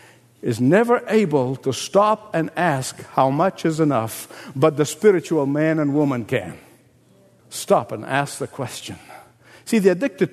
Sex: male